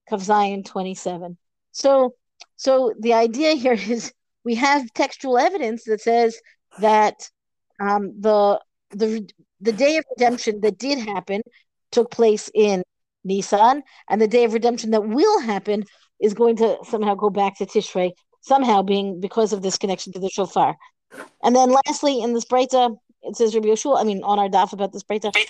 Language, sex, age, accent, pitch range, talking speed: English, female, 50-69, American, 205-255 Hz, 170 wpm